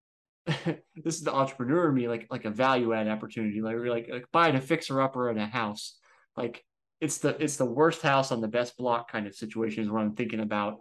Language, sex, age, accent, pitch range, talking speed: English, male, 20-39, American, 110-135 Hz, 220 wpm